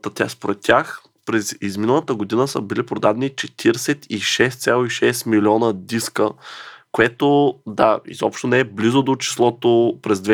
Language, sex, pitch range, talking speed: Bulgarian, male, 110-120 Hz, 120 wpm